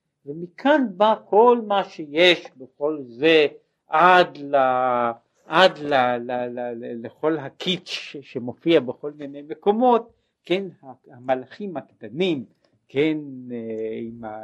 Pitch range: 130-200 Hz